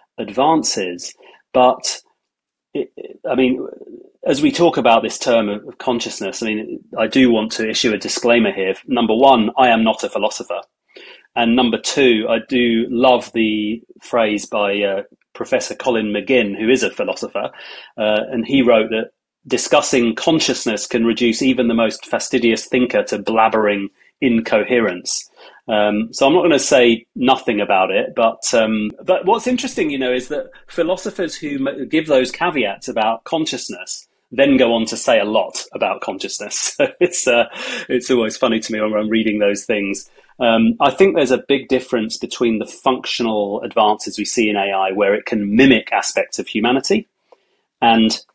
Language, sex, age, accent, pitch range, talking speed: English, male, 30-49, British, 110-130 Hz, 165 wpm